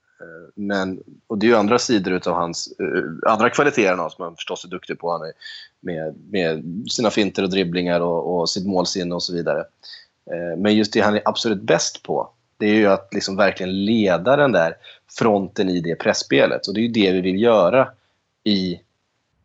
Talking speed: 180 wpm